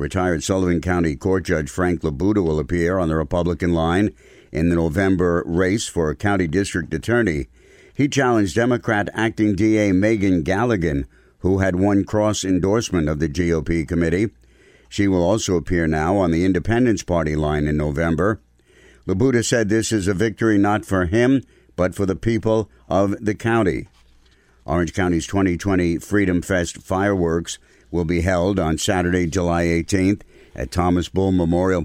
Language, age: English, 60-79